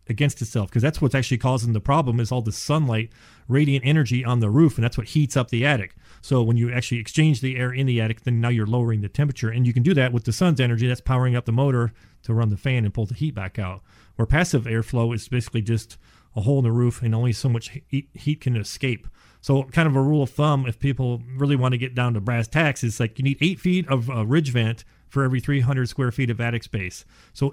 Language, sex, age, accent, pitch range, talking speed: English, male, 40-59, American, 115-140 Hz, 255 wpm